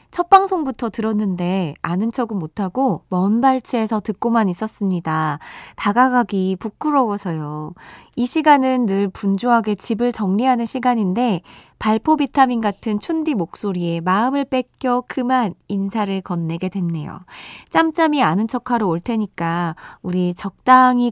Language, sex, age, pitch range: Korean, female, 20-39, 190-265 Hz